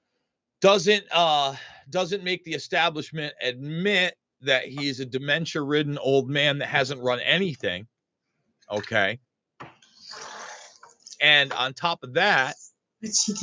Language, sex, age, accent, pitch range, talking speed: English, male, 40-59, American, 130-210 Hz, 105 wpm